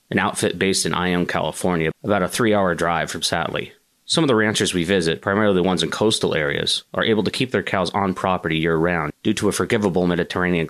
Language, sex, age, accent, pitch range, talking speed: English, male, 30-49, American, 85-100 Hz, 215 wpm